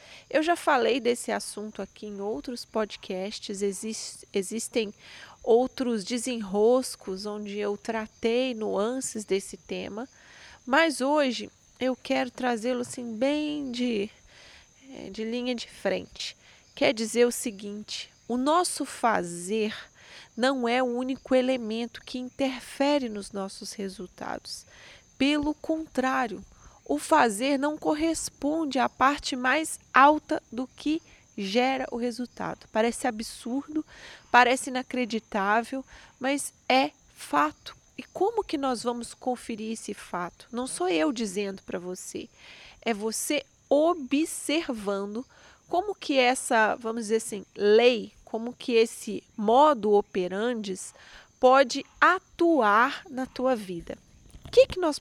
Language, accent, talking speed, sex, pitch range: Portuguese, Brazilian, 115 wpm, female, 220-275 Hz